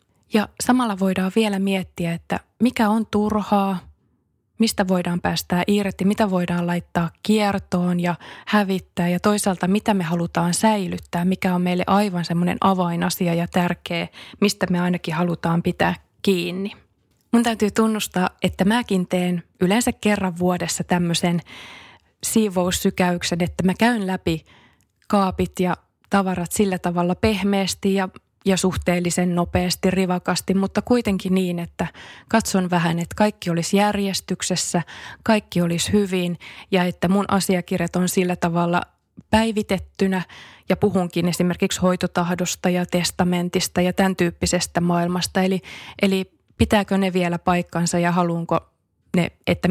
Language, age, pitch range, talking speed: Finnish, 20-39, 175-195 Hz, 130 wpm